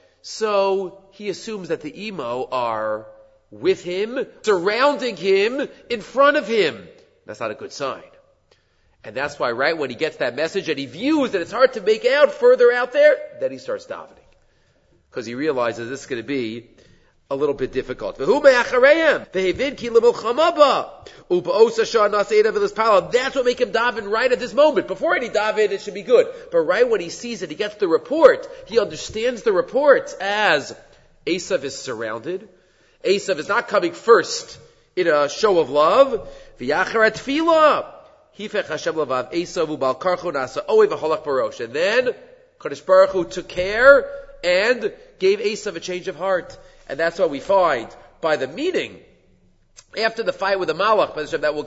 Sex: male